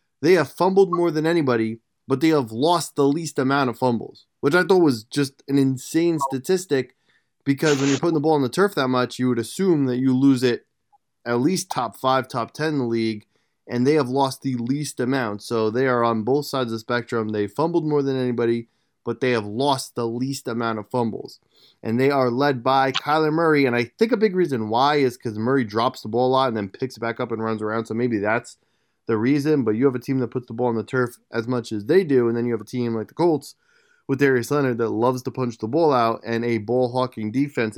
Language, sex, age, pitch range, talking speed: English, male, 20-39, 115-145 Hz, 250 wpm